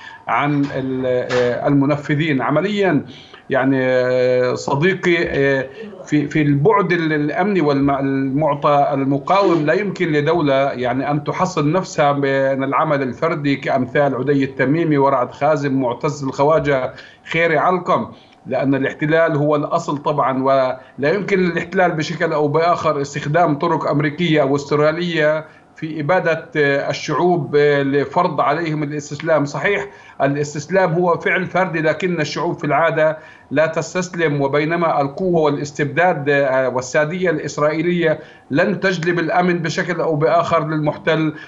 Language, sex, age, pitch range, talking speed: Arabic, male, 50-69, 145-170 Hz, 110 wpm